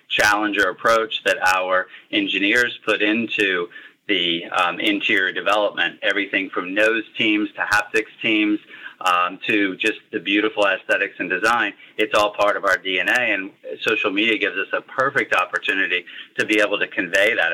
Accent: American